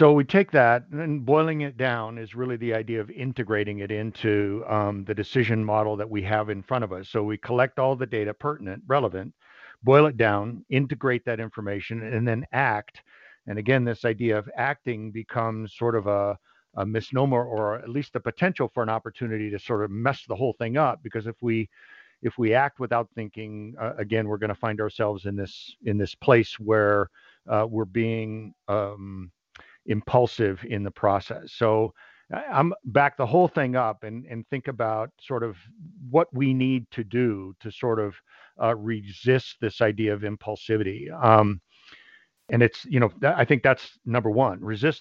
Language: English